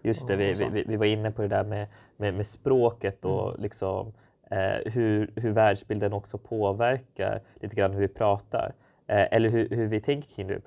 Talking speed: 210 wpm